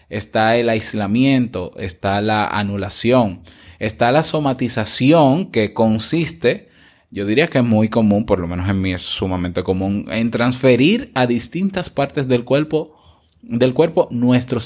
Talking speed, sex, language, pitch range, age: 140 wpm, male, Spanish, 100-125 Hz, 20-39